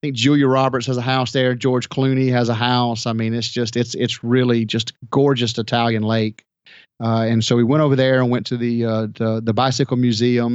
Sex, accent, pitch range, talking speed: male, American, 115-130 Hz, 230 wpm